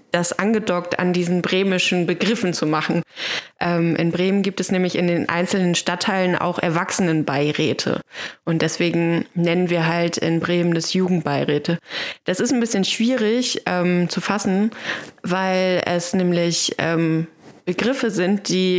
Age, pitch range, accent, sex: 20-39, 175-215 Hz, German, female